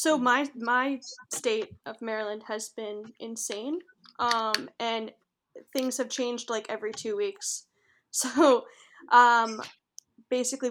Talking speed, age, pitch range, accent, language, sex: 120 wpm, 10-29, 210-240 Hz, American, English, female